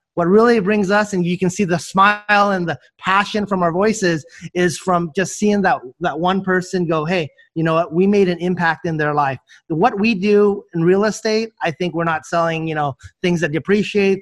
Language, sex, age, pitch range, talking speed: English, male, 30-49, 170-200 Hz, 220 wpm